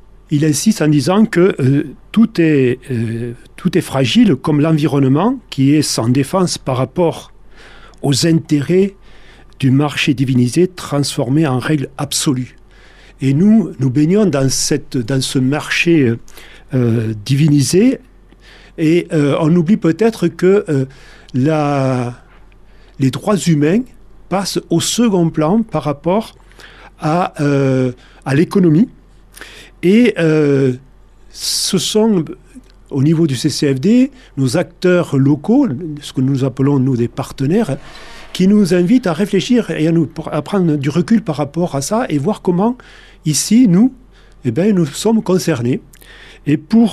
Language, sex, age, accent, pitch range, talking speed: French, male, 40-59, French, 135-185 Hz, 130 wpm